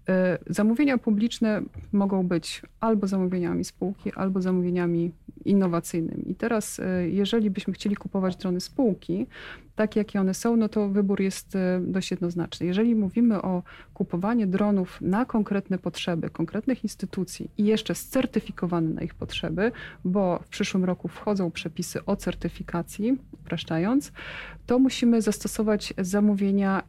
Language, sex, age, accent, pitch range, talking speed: Polish, female, 40-59, native, 175-210 Hz, 125 wpm